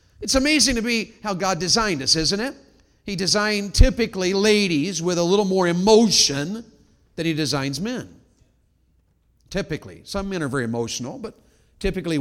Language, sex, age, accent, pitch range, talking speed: English, male, 50-69, American, 145-225 Hz, 150 wpm